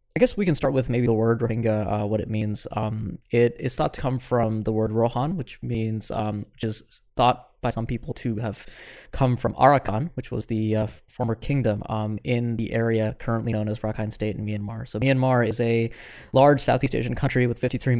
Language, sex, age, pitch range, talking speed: English, male, 20-39, 110-125 Hz, 215 wpm